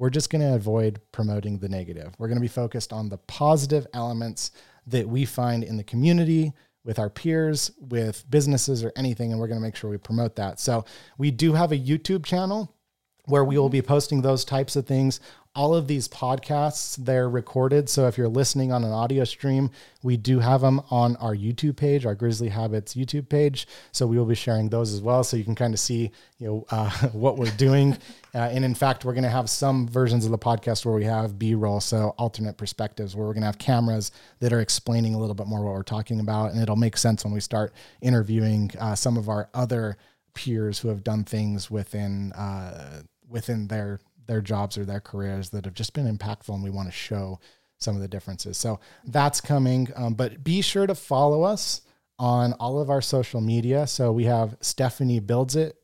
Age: 30-49